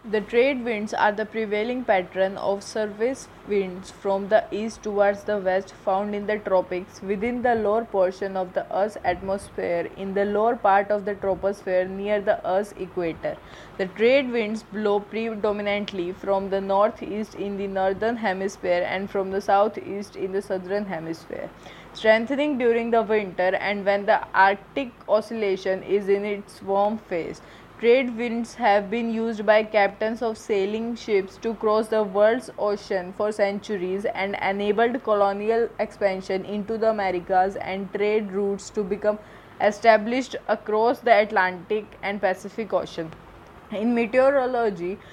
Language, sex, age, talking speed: English, female, 20-39, 150 wpm